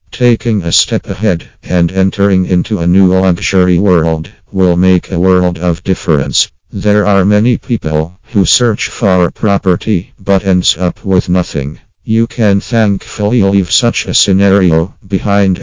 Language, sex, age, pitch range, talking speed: English, male, 50-69, 90-105 Hz, 145 wpm